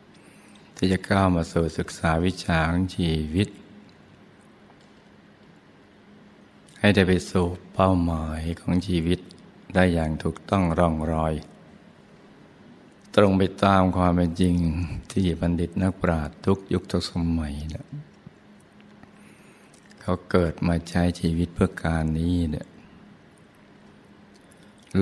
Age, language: 60-79, Thai